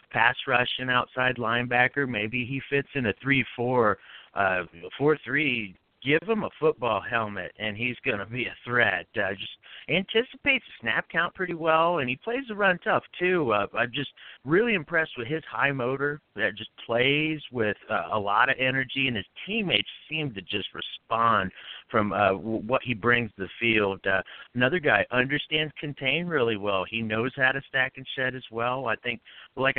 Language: English